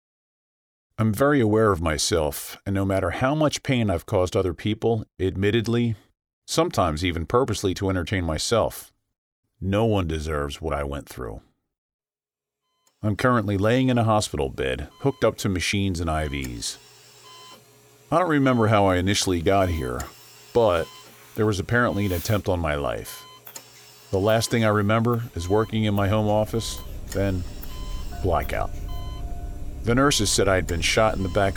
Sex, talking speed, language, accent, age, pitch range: male, 155 wpm, English, American, 40-59, 80-105 Hz